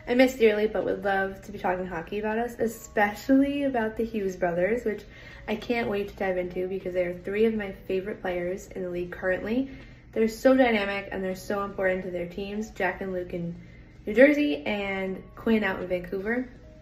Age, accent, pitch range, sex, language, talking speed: 10-29, American, 190-230 Hz, female, English, 200 wpm